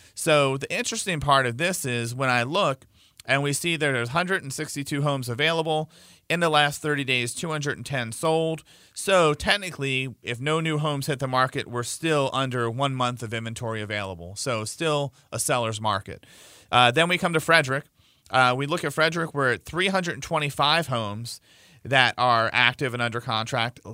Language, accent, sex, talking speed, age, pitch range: English, American, male, 170 wpm, 40-59, 120-150 Hz